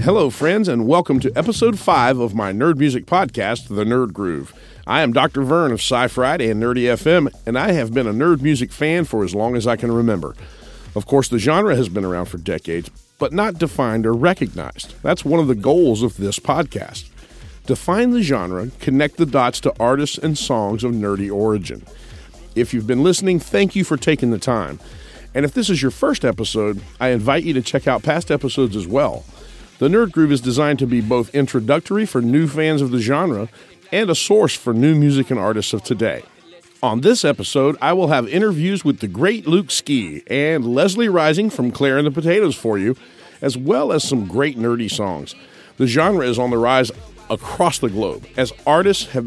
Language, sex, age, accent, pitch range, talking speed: English, male, 40-59, American, 115-155 Hz, 205 wpm